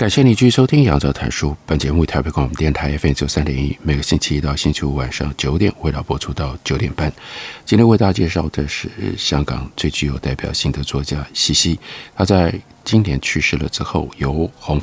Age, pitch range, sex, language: 50-69, 75-105 Hz, male, Chinese